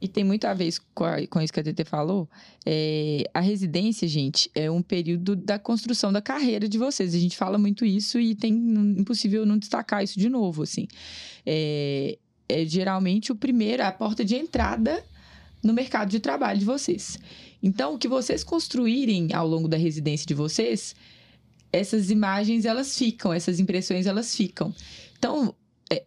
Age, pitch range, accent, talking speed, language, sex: 20-39, 175-235 Hz, Brazilian, 170 wpm, English, female